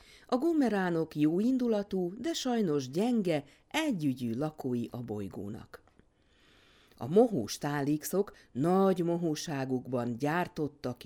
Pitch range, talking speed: 125-200 Hz, 85 wpm